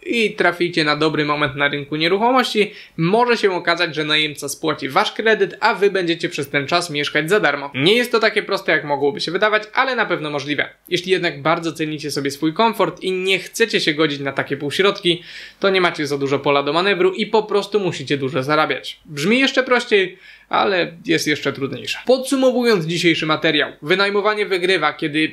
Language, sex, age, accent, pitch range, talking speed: Polish, male, 20-39, native, 155-205 Hz, 190 wpm